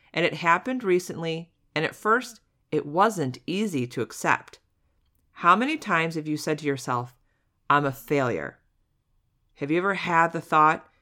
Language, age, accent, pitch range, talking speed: English, 40-59, American, 140-185 Hz, 160 wpm